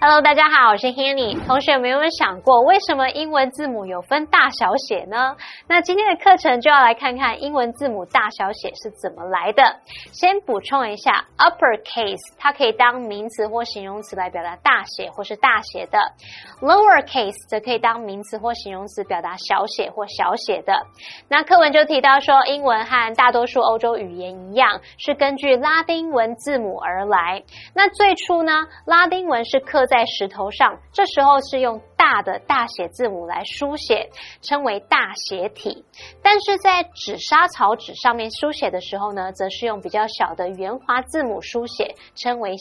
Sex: female